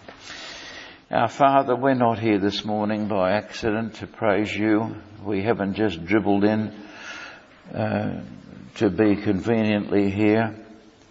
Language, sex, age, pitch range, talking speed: English, male, 60-79, 100-110 Hz, 120 wpm